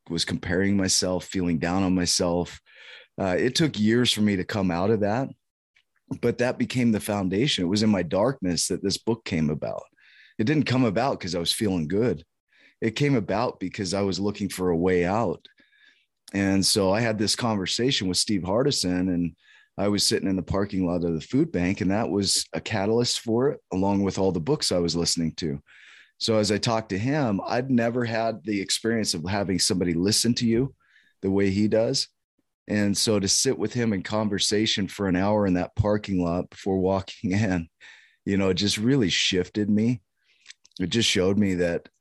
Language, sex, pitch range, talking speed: English, male, 90-110 Hz, 200 wpm